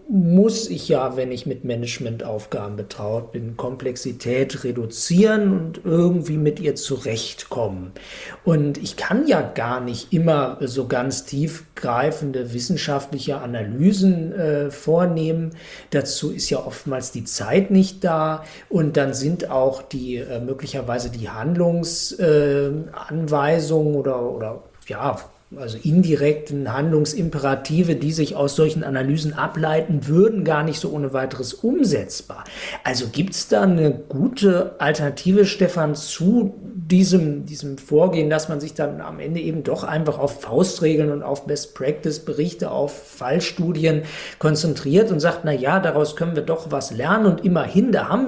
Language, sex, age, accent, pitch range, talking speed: German, male, 50-69, German, 135-170 Hz, 135 wpm